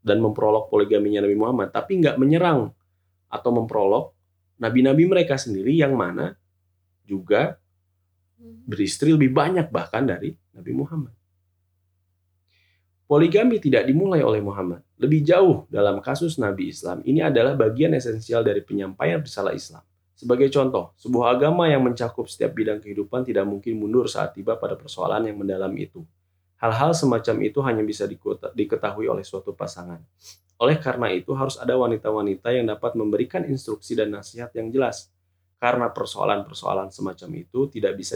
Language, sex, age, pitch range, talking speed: Indonesian, male, 30-49, 90-130 Hz, 140 wpm